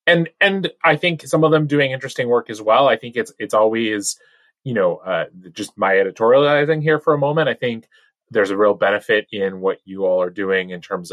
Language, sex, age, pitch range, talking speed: English, male, 20-39, 95-160 Hz, 220 wpm